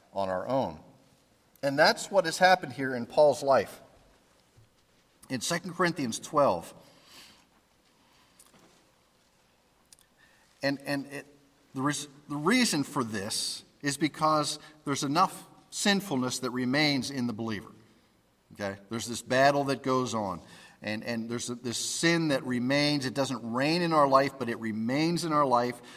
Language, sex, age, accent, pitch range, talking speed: English, male, 50-69, American, 120-150 Hz, 140 wpm